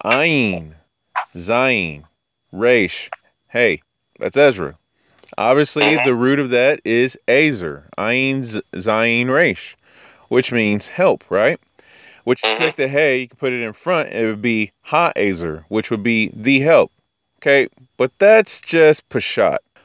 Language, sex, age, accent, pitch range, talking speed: English, male, 30-49, American, 115-140 Hz, 140 wpm